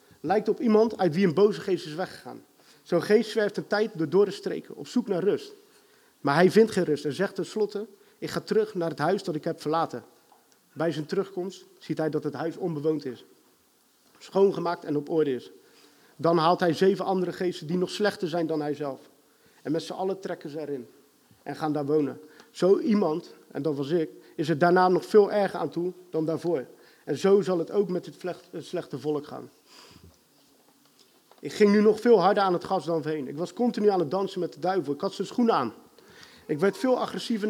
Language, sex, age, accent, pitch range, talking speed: Dutch, male, 40-59, Dutch, 155-195 Hz, 215 wpm